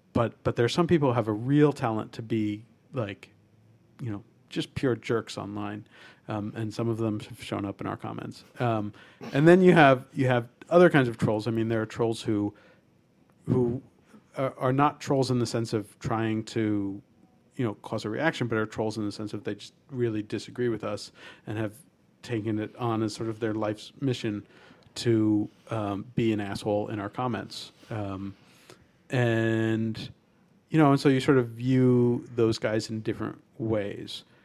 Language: English